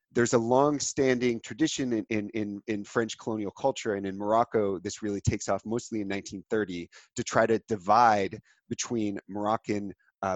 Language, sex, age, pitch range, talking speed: English, male, 30-49, 105-130 Hz, 160 wpm